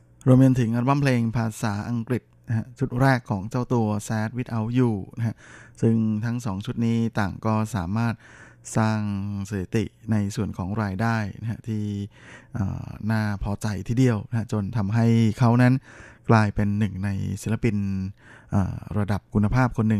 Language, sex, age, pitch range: Thai, male, 20-39, 105-120 Hz